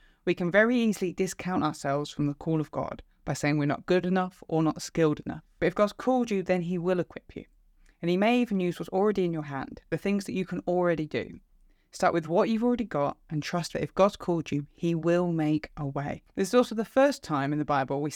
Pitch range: 155-210 Hz